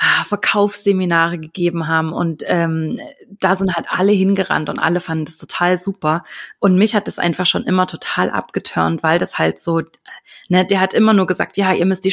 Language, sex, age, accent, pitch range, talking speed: German, female, 30-49, German, 165-200 Hz, 195 wpm